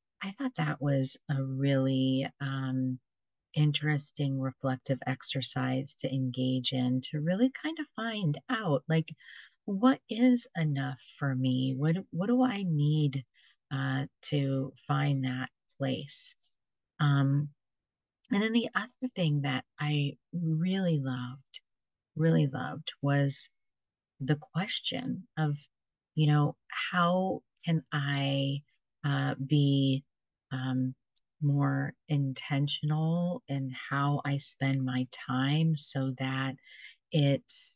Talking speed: 110 wpm